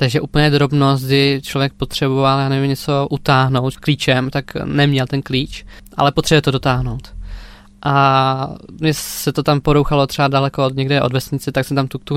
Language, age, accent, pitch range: Czech, 20-39, native, 130-140 Hz